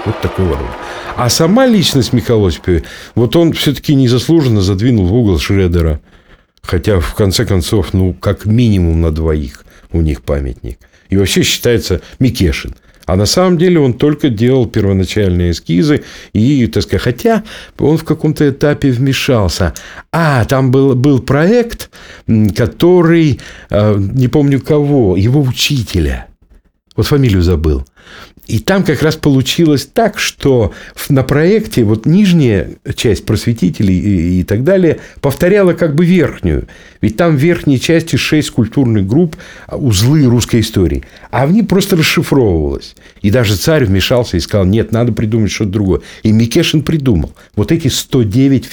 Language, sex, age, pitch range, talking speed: Russian, male, 50-69, 95-140 Hz, 145 wpm